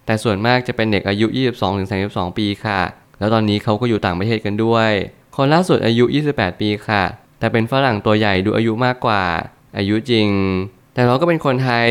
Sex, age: male, 20-39